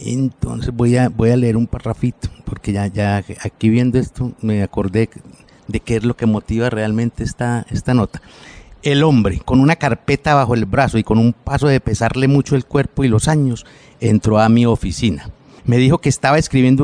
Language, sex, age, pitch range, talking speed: Spanish, male, 50-69, 105-130 Hz, 195 wpm